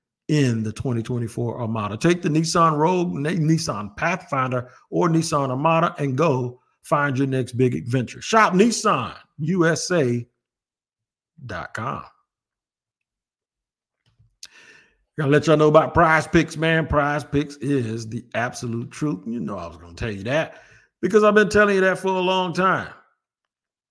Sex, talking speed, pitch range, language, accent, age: male, 140 wpm, 125-165 Hz, English, American, 50-69